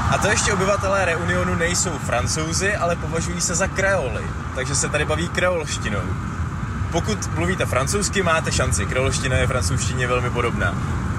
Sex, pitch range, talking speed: male, 105-150 Hz, 145 wpm